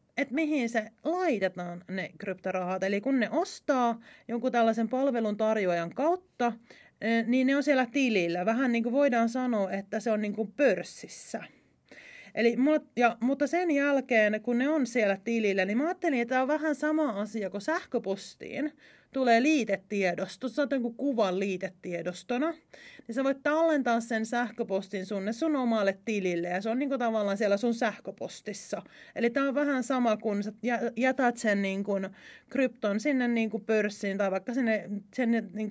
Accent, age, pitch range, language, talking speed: native, 30-49, 205-270 Hz, Finnish, 160 wpm